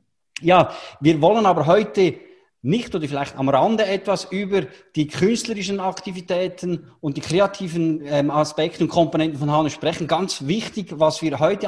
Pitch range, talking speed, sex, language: 150-195 Hz, 150 wpm, male, German